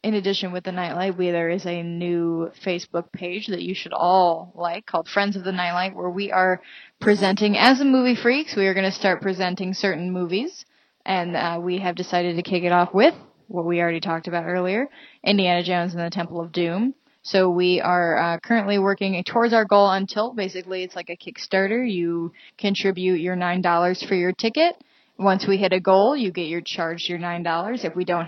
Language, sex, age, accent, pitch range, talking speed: English, female, 20-39, American, 170-205 Hz, 210 wpm